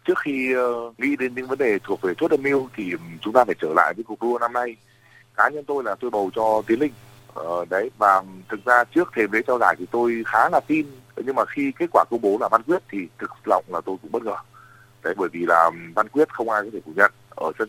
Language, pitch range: Vietnamese, 110-140 Hz